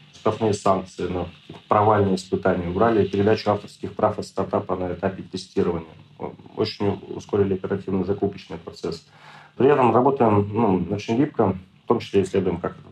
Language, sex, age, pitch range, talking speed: Russian, male, 40-59, 95-105 Hz, 135 wpm